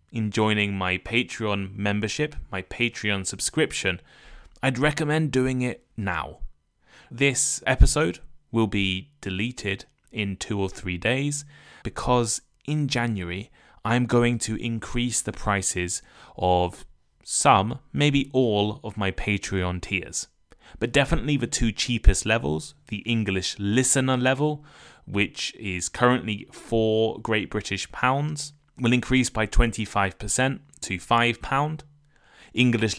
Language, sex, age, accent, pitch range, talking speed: English, male, 20-39, British, 95-120 Hz, 115 wpm